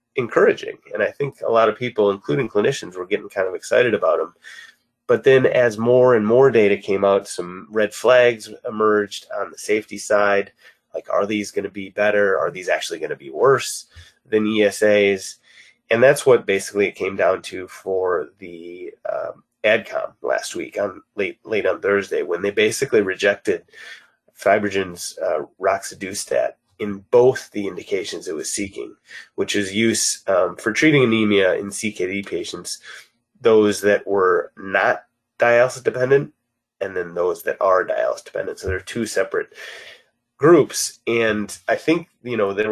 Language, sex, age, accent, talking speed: English, male, 30-49, American, 165 wpm